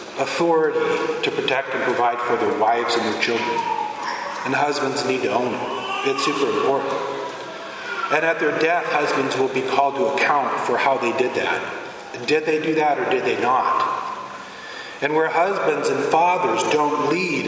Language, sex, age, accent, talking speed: English, male, 40-59, American, 170 wpm